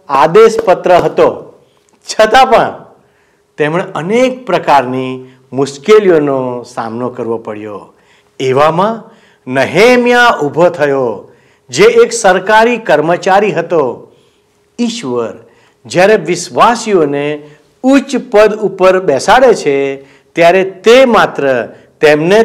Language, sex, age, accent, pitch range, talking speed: Gujarati, male, 60-79, native, 150-230 Hz, 90 wpm